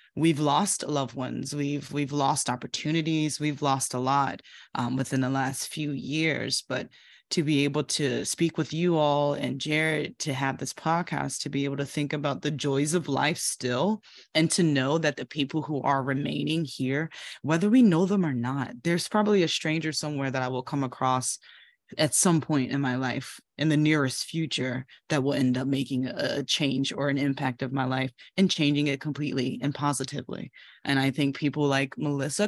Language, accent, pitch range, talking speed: English, American, 135-160 Hz, 195 wpm